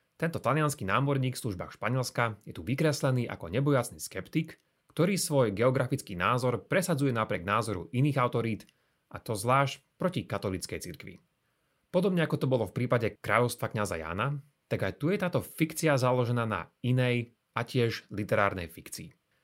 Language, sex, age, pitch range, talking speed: Slovak, male, 30-49, 105-145 Hz, 150 wpm